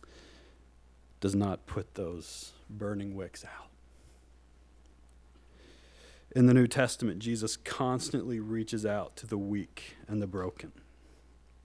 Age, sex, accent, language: 40-59, male, American, English